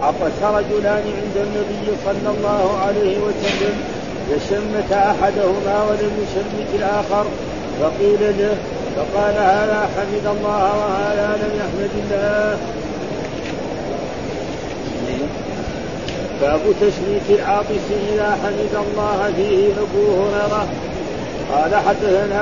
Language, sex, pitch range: Arabic, male, 200-210 Hz